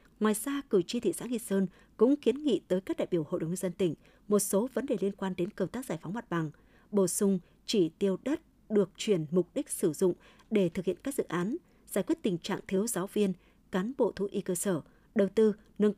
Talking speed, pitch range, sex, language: 245 wpm, 180-225 Hz, female, Vietnamese